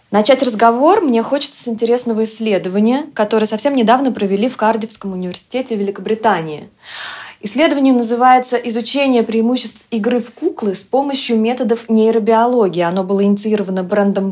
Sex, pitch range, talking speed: female, 200-250 Hz, 125 wpm